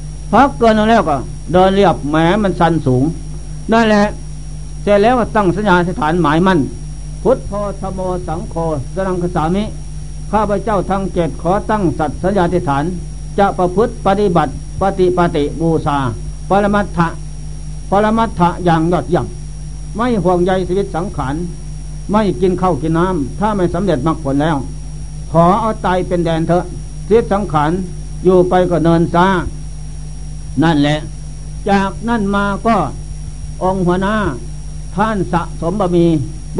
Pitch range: 150-195 Hz